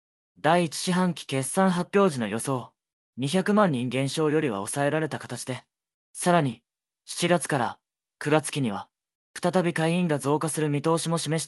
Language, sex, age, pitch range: Japanese, male, 20-39, 125-175 Hz